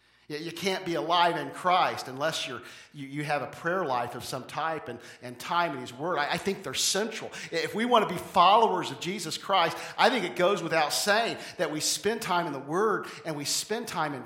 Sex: male